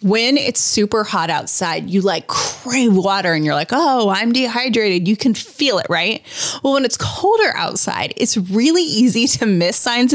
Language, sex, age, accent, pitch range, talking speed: English, female, 20-39, American, 185-255 Hz, 185 wpm